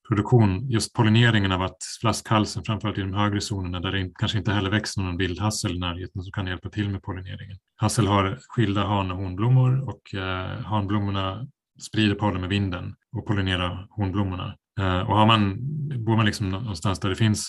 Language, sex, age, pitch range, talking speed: Swedish, male, 30-49, 95-110 Hz, 190 wpm